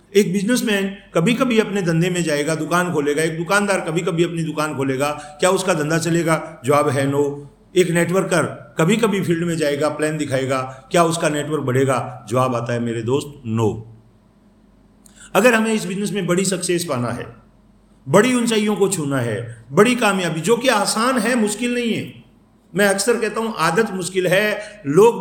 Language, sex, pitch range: Hindi, male, 140-210 Hz